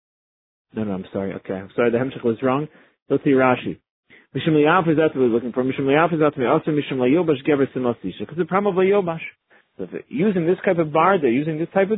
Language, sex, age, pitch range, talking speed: English, male, 30-49, 130-170 Hz, 235 wpm